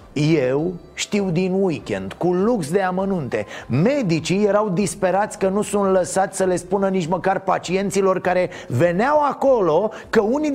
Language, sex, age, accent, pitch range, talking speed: Romanian, male, 30-49, native, 160-205 Hz, 150 wpm